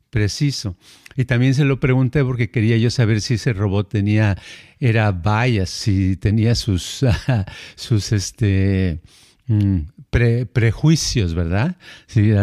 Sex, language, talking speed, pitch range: male, Spanish, 120 wpm, 105-145 Hz